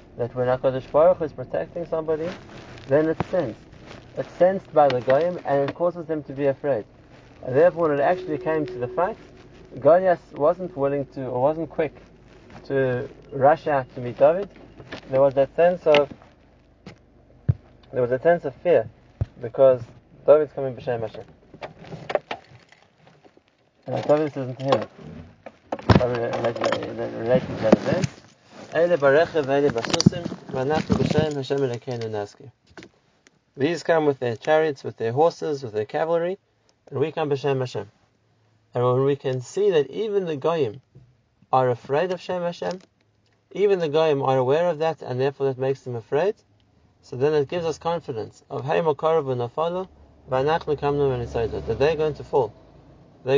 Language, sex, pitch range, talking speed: English, male, 125-160 Hz, 145 wpm